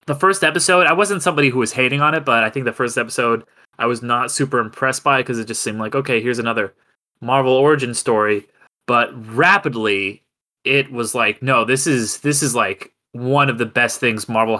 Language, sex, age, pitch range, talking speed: English, male, 20-39, 115-145 Hz, 215 wpm